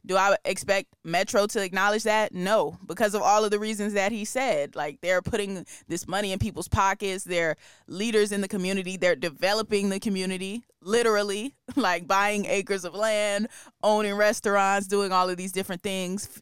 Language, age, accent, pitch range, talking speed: English, 20-39, American, 180-210 Hz, 175 wpm